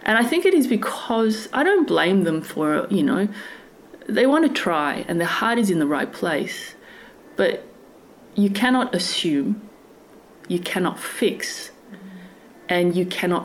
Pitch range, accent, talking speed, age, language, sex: 185-245 Hz, Australian, 155 wpm, 30-49, English, female